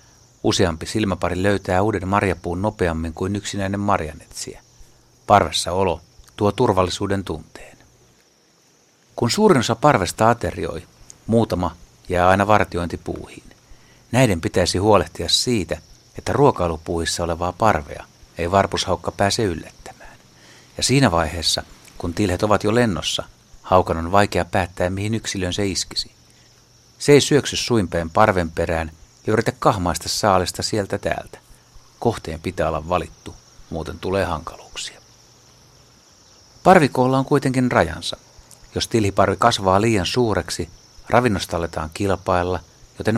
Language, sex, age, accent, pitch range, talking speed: Finnish, male, 60-79, native, 85-110 Hz, 115 wpm